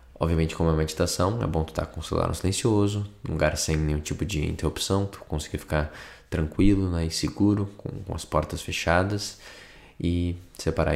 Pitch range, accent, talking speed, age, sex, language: 80-95 Hz, Brazilian, 195 wpm, 20-39, male, Portuguese